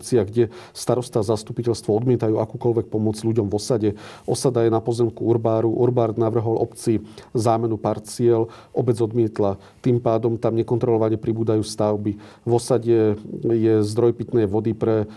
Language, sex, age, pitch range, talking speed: Slovak, male, 40-59, 105-115 Hz, 140 wpm